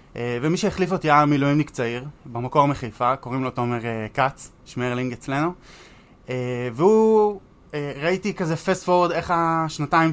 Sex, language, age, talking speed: male, Hebrew, 20-39, 150 wpm